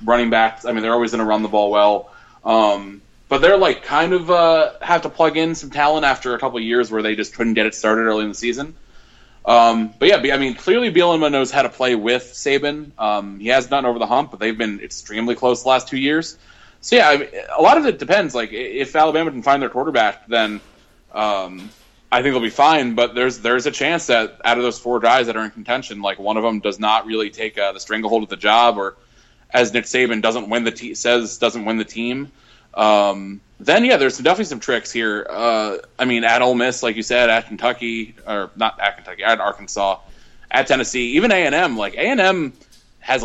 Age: 20-39